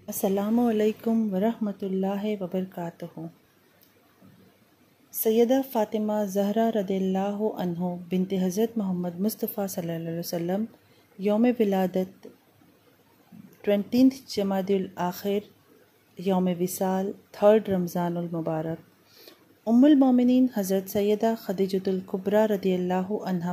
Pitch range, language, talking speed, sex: 185-215 Hz, Urdu, 95 wpm, female